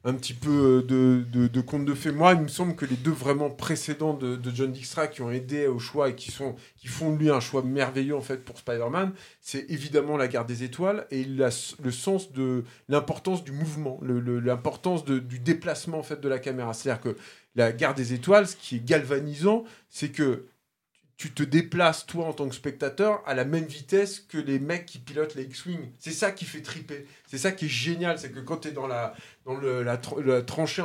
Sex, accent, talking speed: male, French, 225 wpm